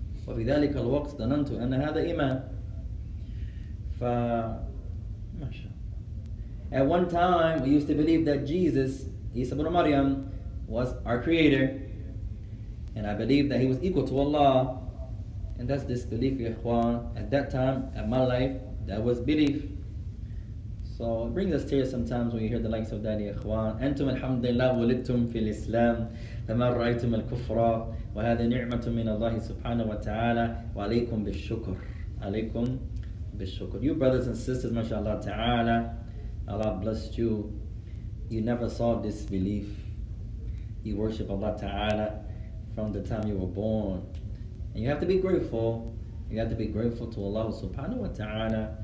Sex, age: male, 20-39